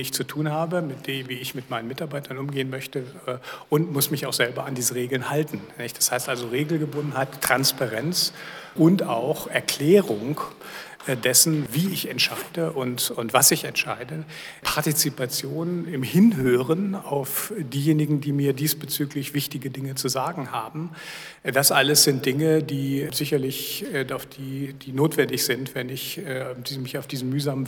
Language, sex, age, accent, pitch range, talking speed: German, male, 60-79, German, 130-155 Hz, 150 wpm